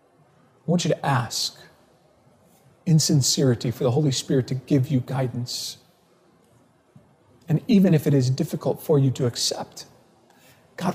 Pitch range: 130-165 Hz